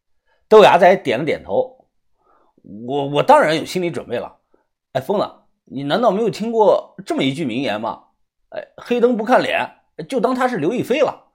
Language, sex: Chinese, male